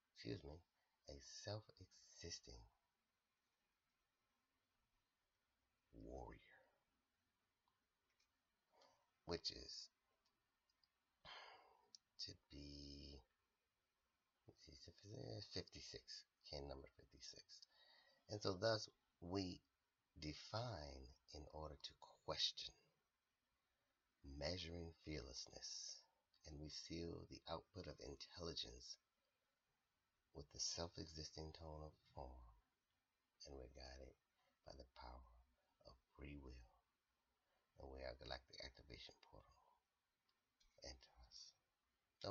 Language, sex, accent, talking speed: English, male, American, 80 wpm